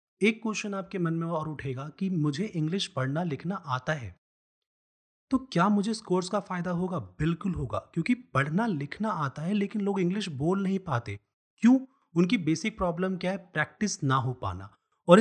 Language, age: Hindi, 30-49